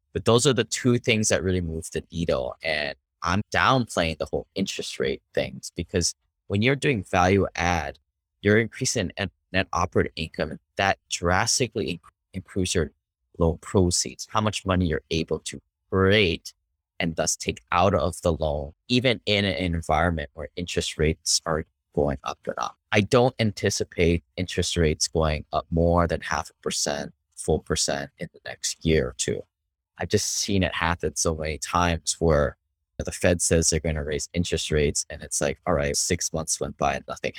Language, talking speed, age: English, 185 wpm, 30-49